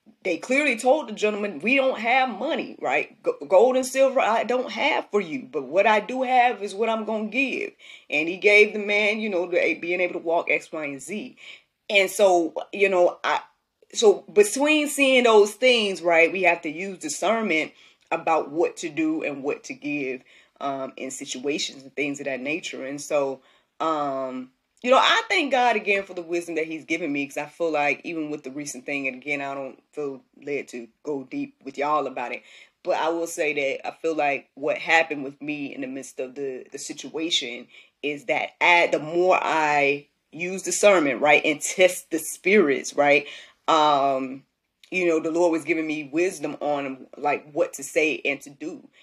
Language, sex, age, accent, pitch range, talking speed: English, female, 20-39, American, 145-225 Hz, 200 wpm